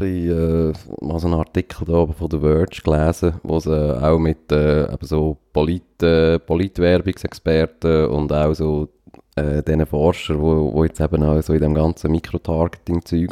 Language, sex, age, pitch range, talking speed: German, male, 20-39, 80-90 Hz, 160 wpm